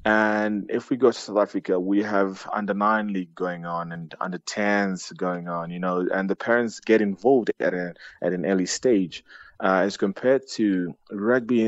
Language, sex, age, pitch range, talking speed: English, male, 20-39, 95-110 Hz, 185 wpm